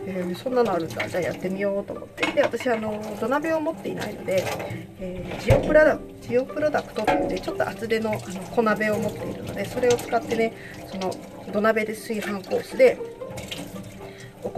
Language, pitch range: Japanese, 190-275 Hz